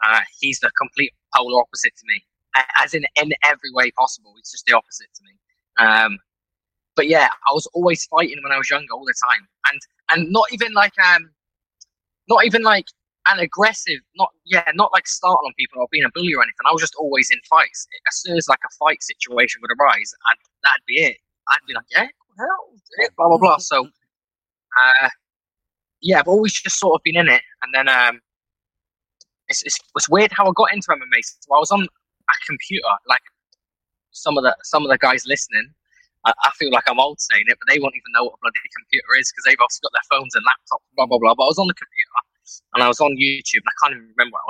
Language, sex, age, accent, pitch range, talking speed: English, male, 10-29, British, 130-215 Hz, 225 wpm